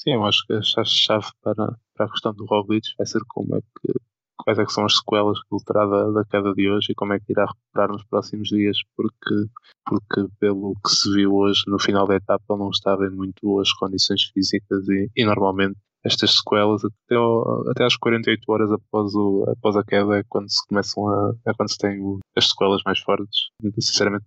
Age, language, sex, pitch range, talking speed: 20-39, Portuguese, male, 100-105 Hz, 215 wpm